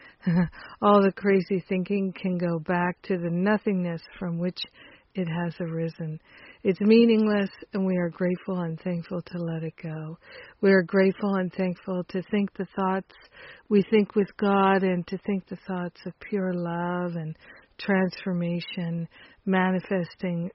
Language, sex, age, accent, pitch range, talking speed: English, female, 50-69, American, 170-195 Hz, 150 wpm